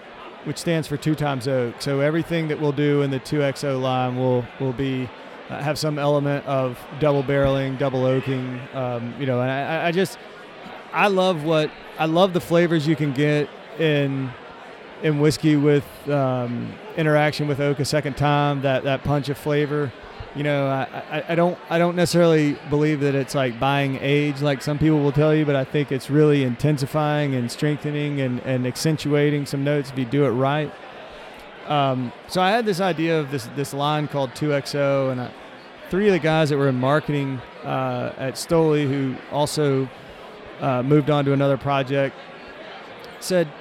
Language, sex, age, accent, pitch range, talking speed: English, male, 30-49, American, 135-155 Hz, 185 wpm